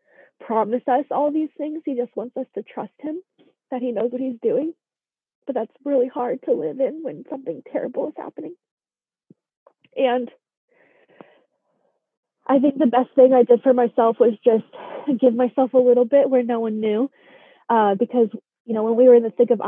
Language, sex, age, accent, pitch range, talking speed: English, female, 20-39, American, 200-250 Hz, 190 wpm